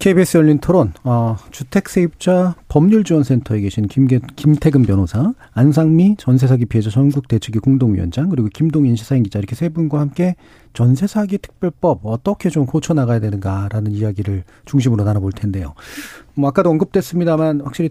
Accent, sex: native, male